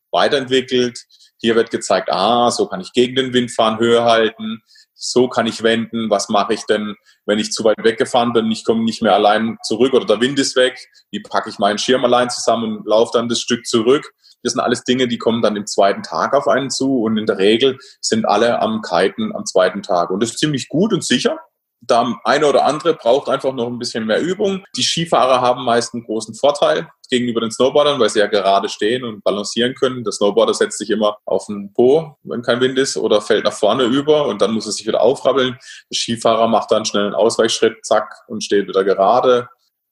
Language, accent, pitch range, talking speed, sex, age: German, German, 110-130 Hz, 220 wpm, male, 30-49